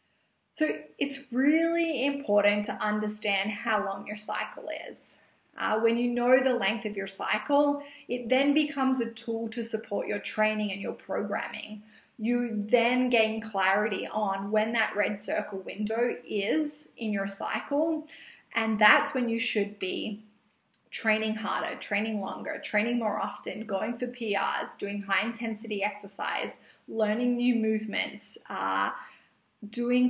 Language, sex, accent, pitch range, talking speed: English, female, Australian, 210-250 Hz, 140 wpm